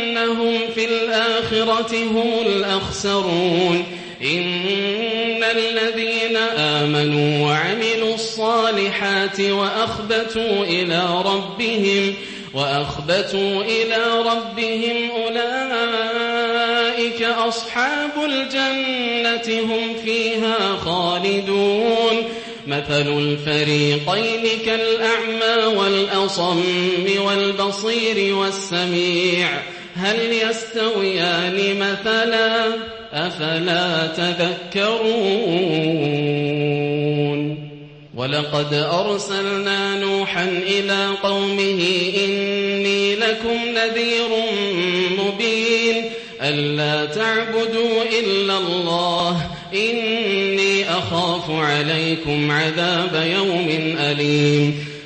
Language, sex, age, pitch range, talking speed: English, male, 30-49, 175-225 Hz, 55 wpm